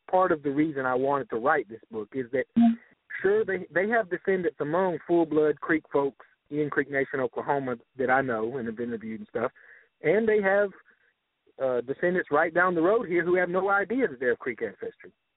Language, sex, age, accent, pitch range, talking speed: English, male, 50-69, American, 135-190 Hz, 205 wpm